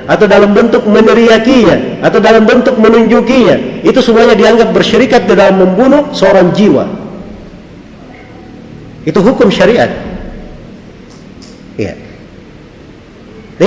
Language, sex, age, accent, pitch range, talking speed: Indonesian, male, 40-59, native, 190-245 Hz, 90 wpm